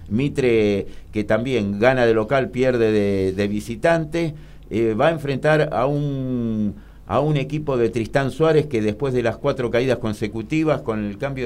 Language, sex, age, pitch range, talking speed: Spanish, male, 50-69, 105-140 Hz, 170 wpm